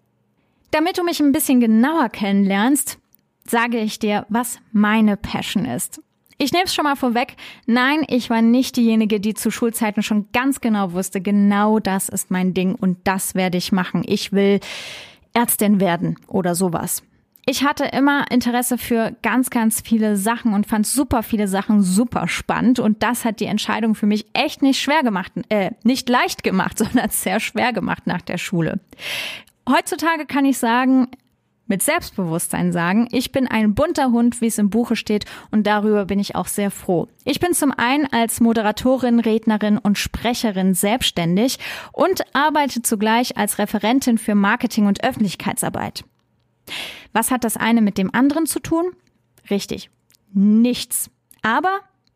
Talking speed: 160 wpm